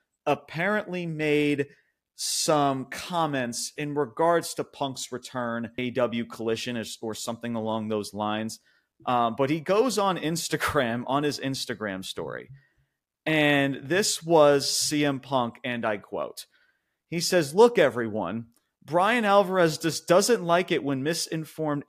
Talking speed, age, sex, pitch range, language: 125 wpm, 30-49, male, 120-165 Hz, English